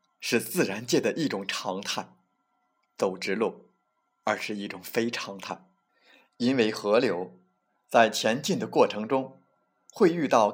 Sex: male